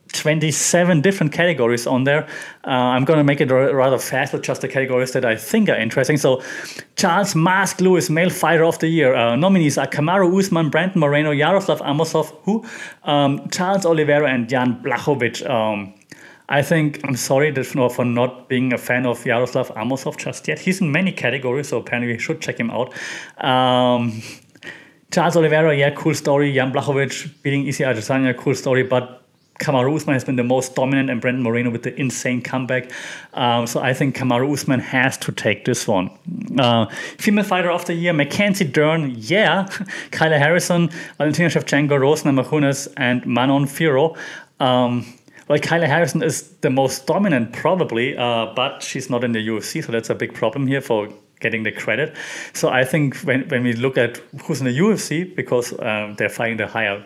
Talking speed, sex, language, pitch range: 185 wpm, male, English, 125-160 Hz